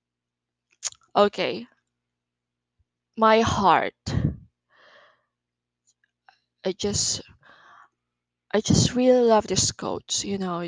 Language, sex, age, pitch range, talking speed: Filipino, female, 20-39, 165-220 Hz, 75 wpm